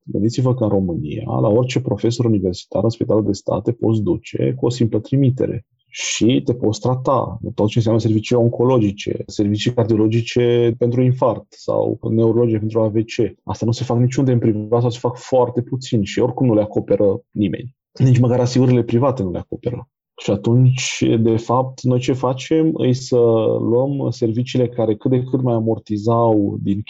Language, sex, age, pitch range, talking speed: Romanian, male, 20-39, 110-130 Hz, 175 wpm